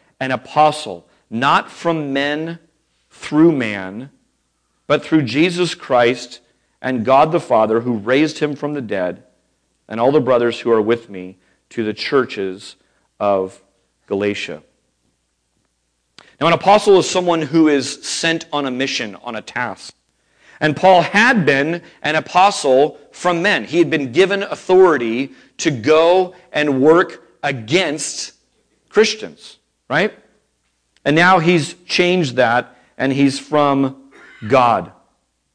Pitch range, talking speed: 120-165 Hz, 130 wpm